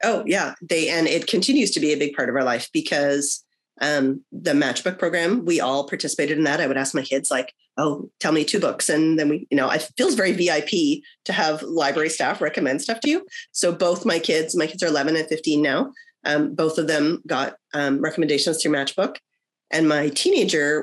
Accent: American